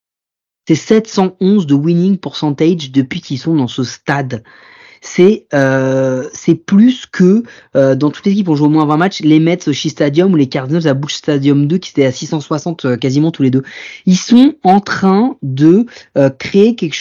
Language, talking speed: French, 190 wpm